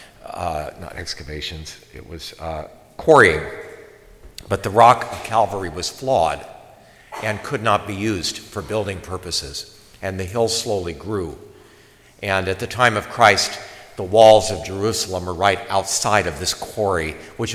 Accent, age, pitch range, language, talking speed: American, 60-79, 90-105 Hz, English, 150 wpm